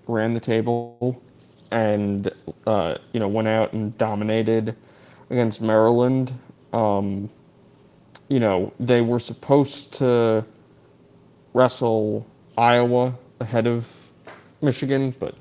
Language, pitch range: English, 110-125 Hz